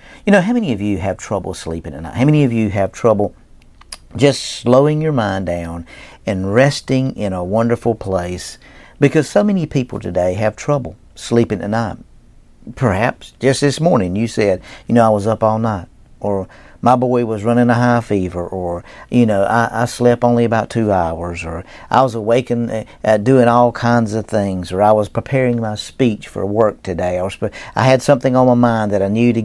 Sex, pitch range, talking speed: male, 100-130 Hz, 200 wpm